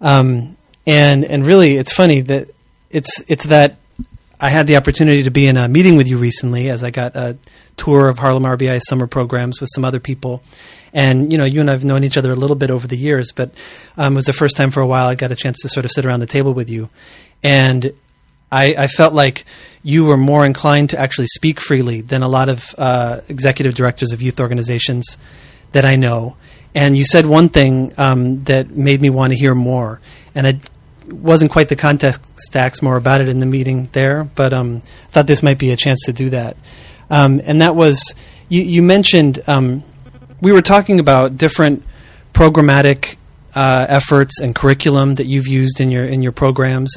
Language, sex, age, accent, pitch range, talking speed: English, male, 30-49, American, 130-145 Hz, 210 wpm